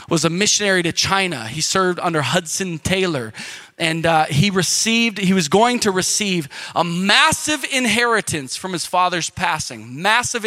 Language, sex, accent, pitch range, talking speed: English, male, American, 150-200 Hz, 155 wpm